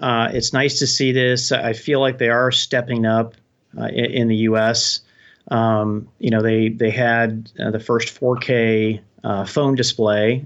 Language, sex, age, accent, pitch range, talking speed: English, male, 40-59, American, 115-135 Hz, 180 wpm